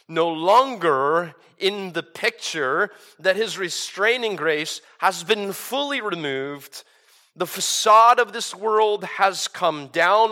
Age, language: 30-49, English